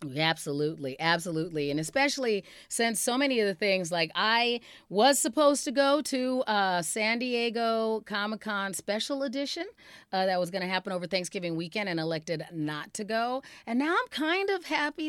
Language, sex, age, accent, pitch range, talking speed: English, female, 30-49, American, 180-250 Hz, 165 wpm